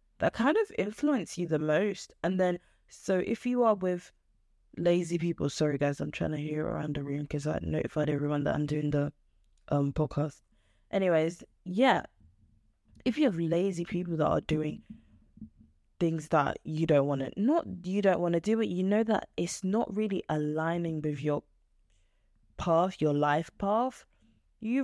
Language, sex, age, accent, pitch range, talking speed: English, female, 20-39, British, 150-195 Hz, 175 wpm